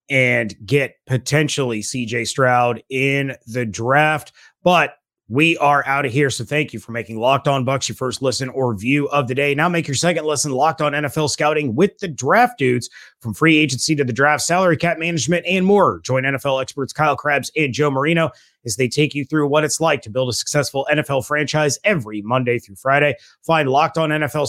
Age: 30-49